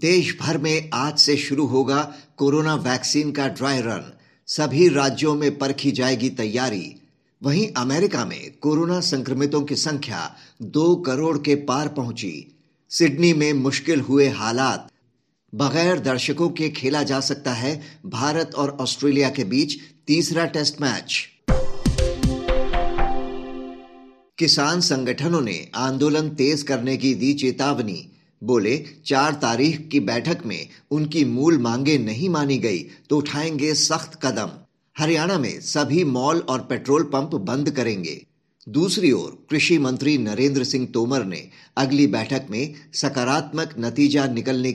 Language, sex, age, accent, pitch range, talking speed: Hindi, male, 50-69, native, 130-150 Hz, 130 wpm